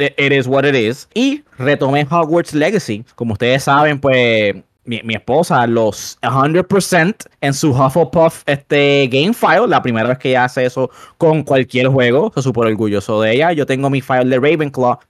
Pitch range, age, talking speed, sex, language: 125-165 Hz, 20-39, 180 wpm, male, Spanish